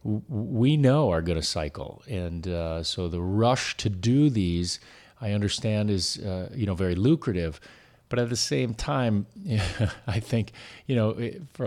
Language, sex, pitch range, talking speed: English, male, 95-120 Hz, 165 wpm